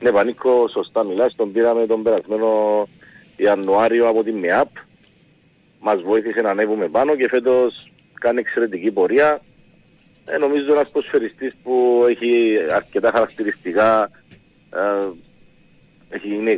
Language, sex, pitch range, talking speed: Greek, male, 110-150 Hz, 115 wpm